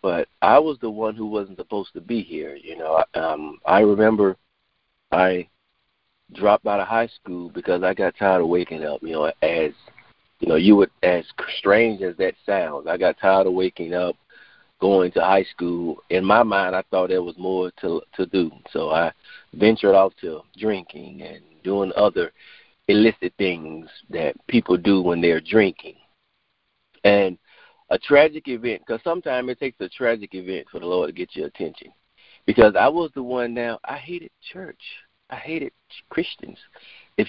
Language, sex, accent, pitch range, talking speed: English, male, American, 95-150 Hz, 175 wpm